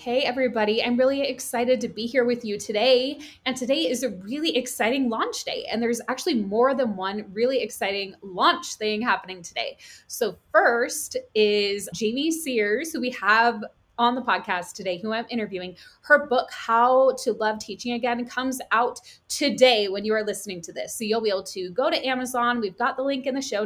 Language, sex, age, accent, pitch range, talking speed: English, female, 20-39, American, 210-260 Hz, 195 wpm